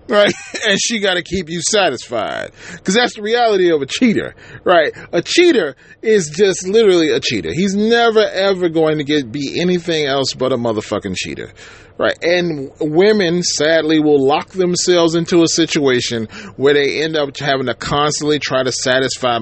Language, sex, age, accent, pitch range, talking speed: English, male, 30-49, American, 150-195 Hz, 175 wpm